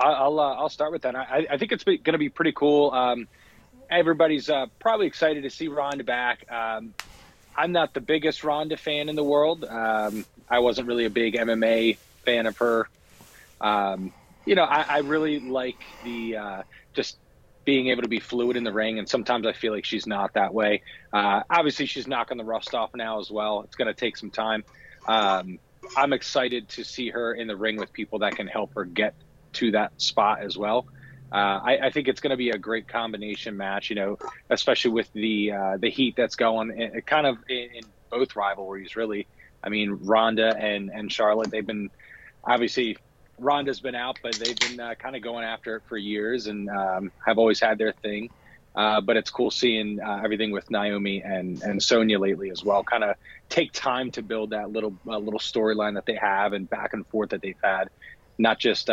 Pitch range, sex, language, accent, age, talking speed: 105-130 Hz, male, English, American, 30-49, 210 wpm